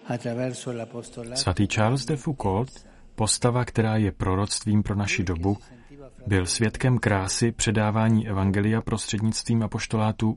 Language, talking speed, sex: Czech, 105 wpm, male